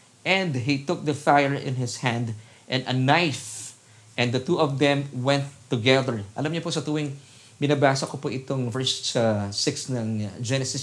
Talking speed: 170 wpm